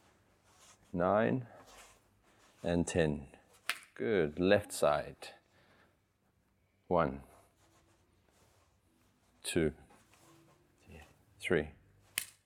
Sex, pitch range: male, 85-105 Hz